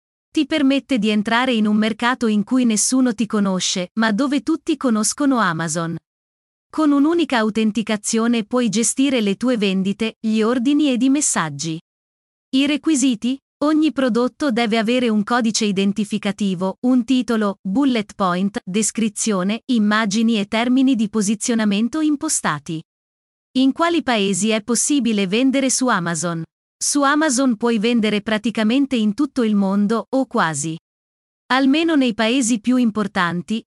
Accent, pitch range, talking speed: native, 210-255 Hz, 130 wpm